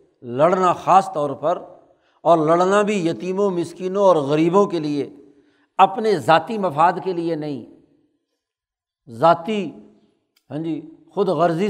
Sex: male